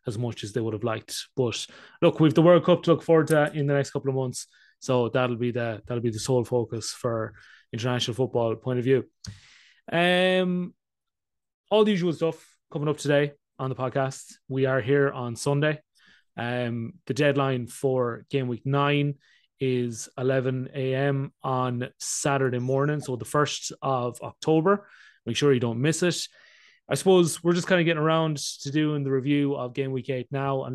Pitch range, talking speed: 120-145 Hz, 185 wpm